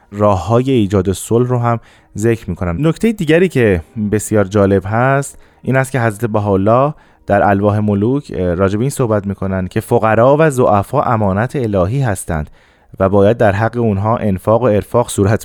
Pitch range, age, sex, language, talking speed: 100-130 Hz, 20-39, male, Persian, 165 wpm